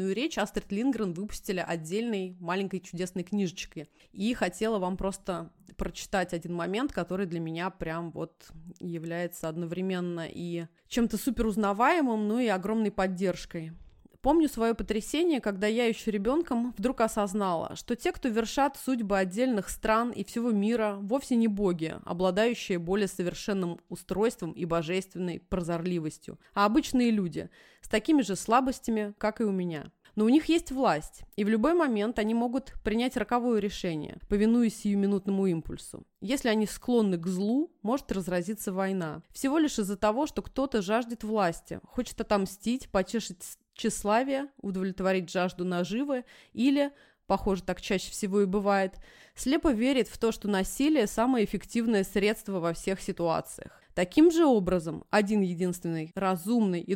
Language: Russian